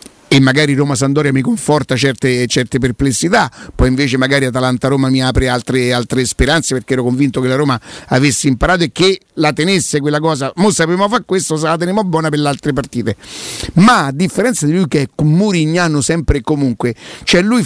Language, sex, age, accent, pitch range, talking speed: Italian, male, 50-69, native, 140-195 Hz, 195 wpm